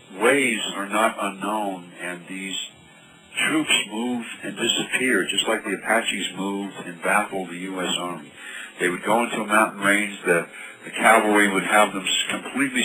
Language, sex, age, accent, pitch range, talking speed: English, male, 50-69, American, 95-115 Hz, 160 wpm